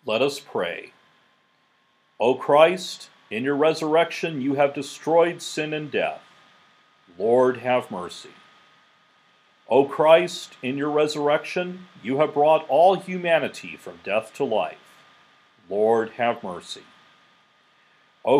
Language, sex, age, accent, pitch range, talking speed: English, male, 50-69, American, 135-165 Hz, 115 wpm